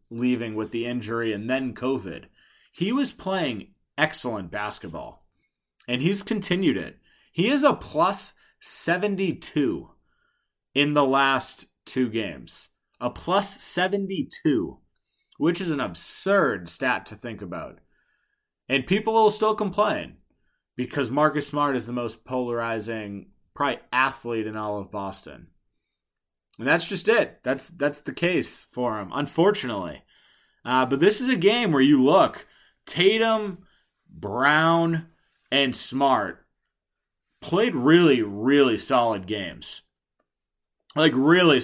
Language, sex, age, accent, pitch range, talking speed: English, male, 30-49, American, 115-175 Hz, 125 wpm